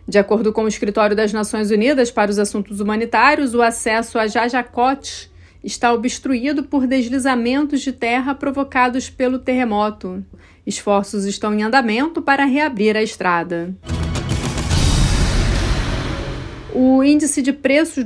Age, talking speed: 40-59, 125 wpm